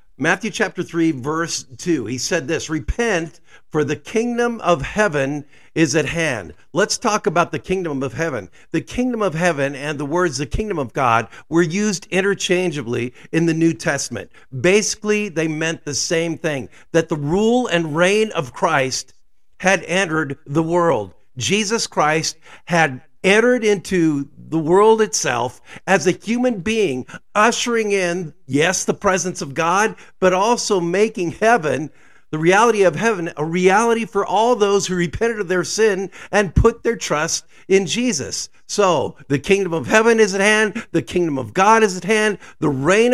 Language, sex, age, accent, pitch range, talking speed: English, male, 50-69, American, 155-210 Hz, 165 wpm